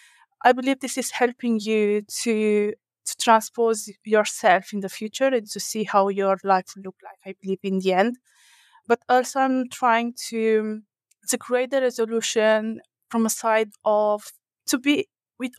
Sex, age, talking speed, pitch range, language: female, 20-39, 165 wpm, 210-245 Hz, English